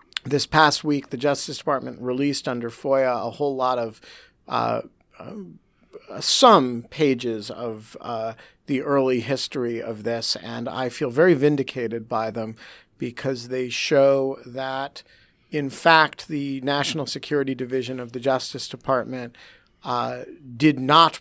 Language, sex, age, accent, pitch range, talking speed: English, male, 50-69, American, 125-150 Hz, 135 wpm